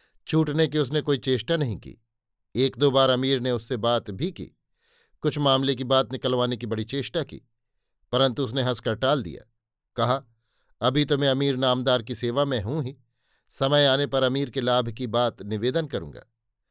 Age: 50-69